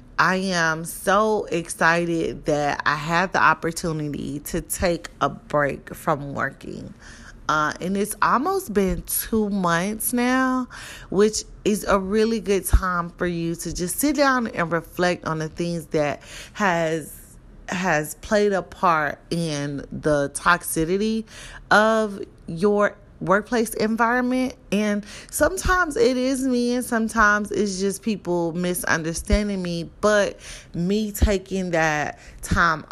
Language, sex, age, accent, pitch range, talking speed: English, female, 30-49, American, 160-215 Hz, 130 wpm